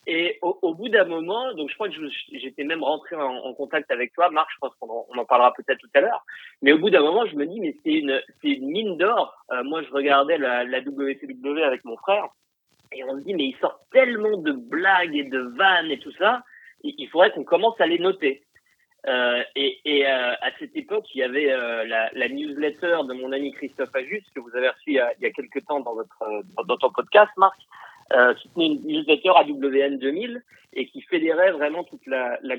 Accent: French